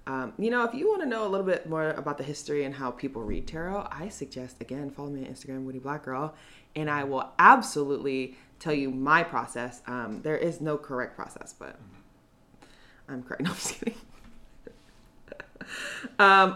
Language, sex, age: English, female, 30-49